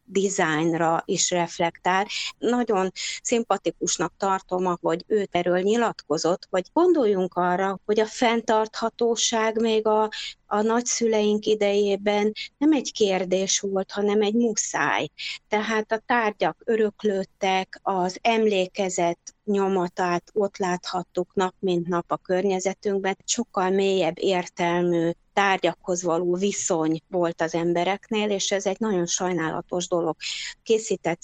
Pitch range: 170-205 Hz